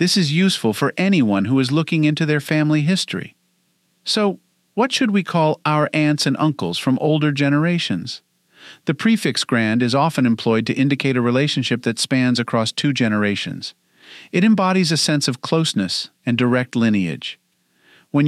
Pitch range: 130-160 Hz